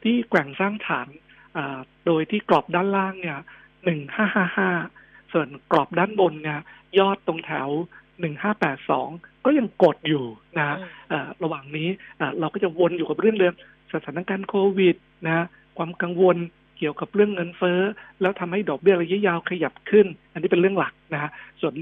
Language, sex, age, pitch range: Thai, male, 60-79, 150-185 Hz